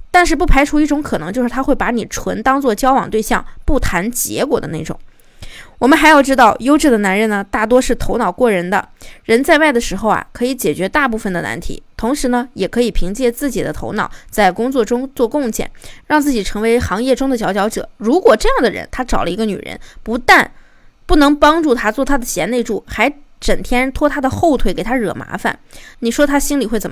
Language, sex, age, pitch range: Chinese, female, 20-39, 200-265 Hz